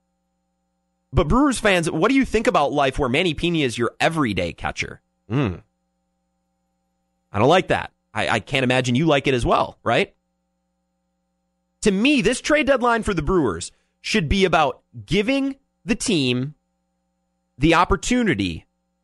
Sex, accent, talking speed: male, American, 150 wpm